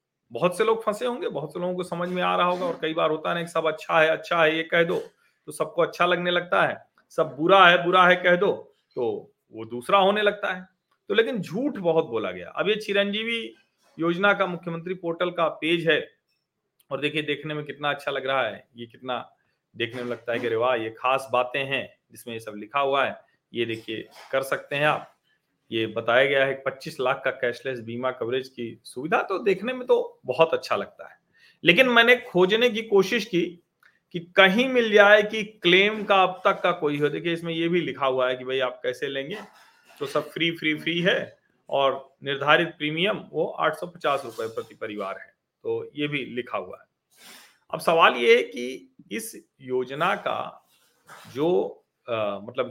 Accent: native